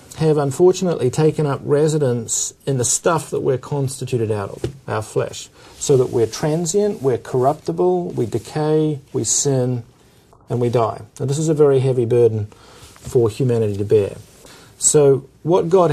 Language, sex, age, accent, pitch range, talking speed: English, male, 40-59, Australian, 120-155 Hz, 160 wpm